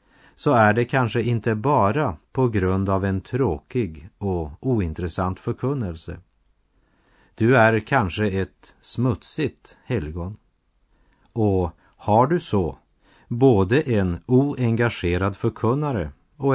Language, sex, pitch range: Chinese, male, 90-120 Hz